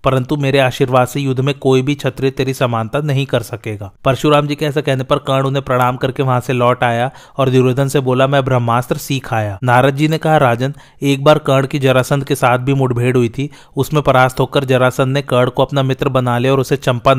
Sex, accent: male, native